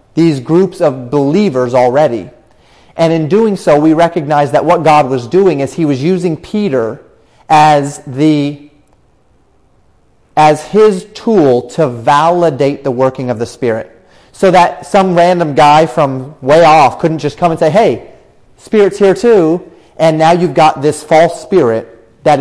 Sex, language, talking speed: male, English, 155 wpm